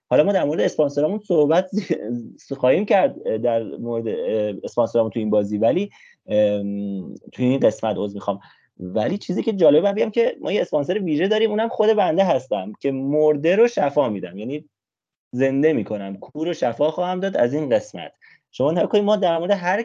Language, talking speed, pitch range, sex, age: Persian, 170 wpm, 120-185 Hz, male, 30-49